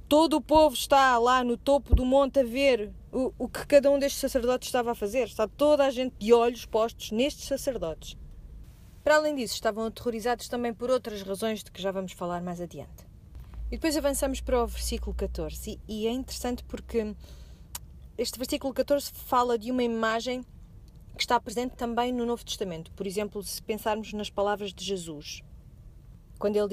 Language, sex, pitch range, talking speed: Portuguese, female, 195-255 Hz, 185 wpm